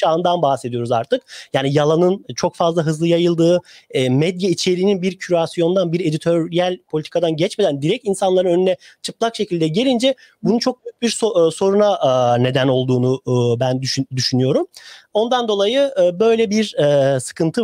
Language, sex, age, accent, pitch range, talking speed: Turkish, male, 40-59, native, 140-200 Hz, 130 wpm